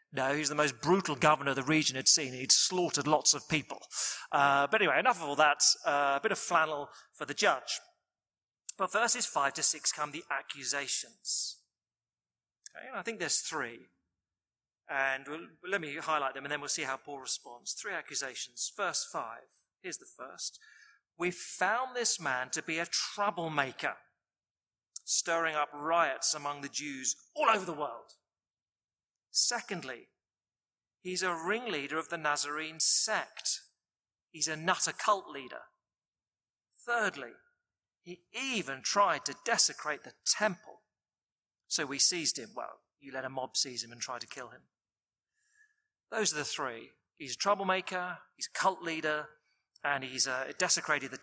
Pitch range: 140-185 Hz